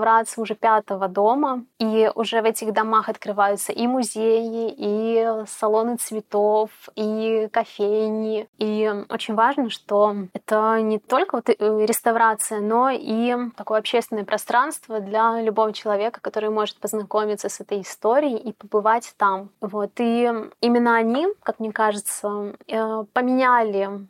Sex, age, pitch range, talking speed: female, 20-39, 215-240 Hz, 125 wpm